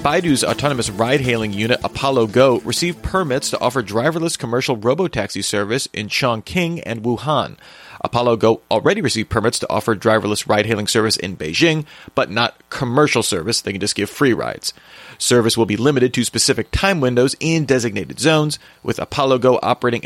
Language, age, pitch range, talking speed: English, 40-59, 115-135 Hz, 165 wpm